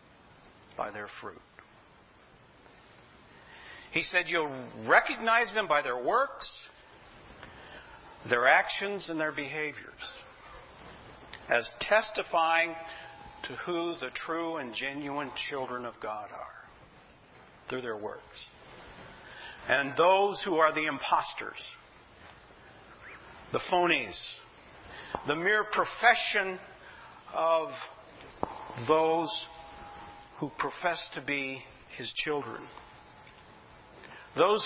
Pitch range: 155-205 Hz